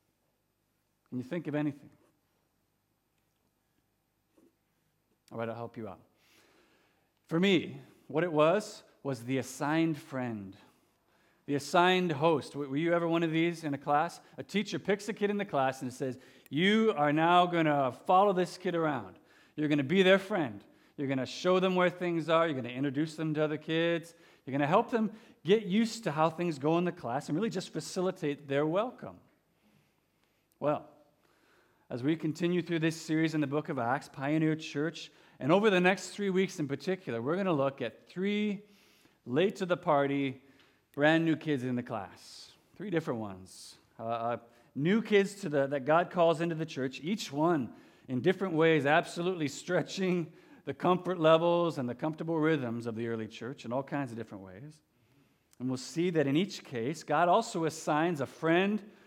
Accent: American